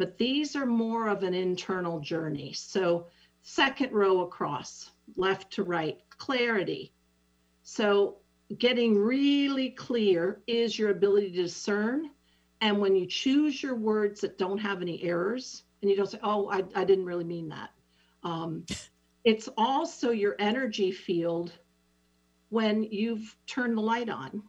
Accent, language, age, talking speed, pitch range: American, English, 50-69, 145 wpm, 170-220 Hz